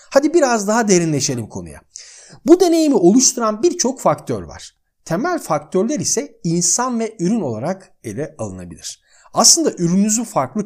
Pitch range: 155-255 Hz